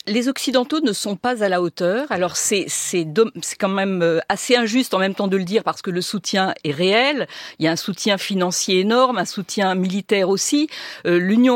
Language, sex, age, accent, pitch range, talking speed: French, female, 50-69, French, 195-255 Hz, 210 wpm